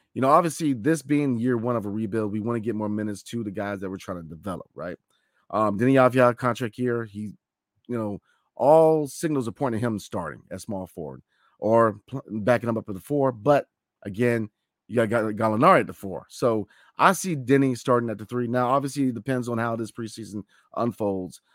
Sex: male